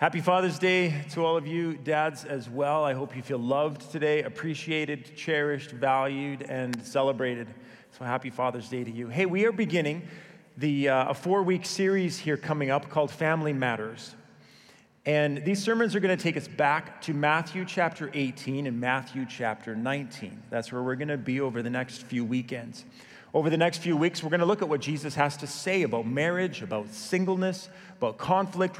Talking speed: 190 wpm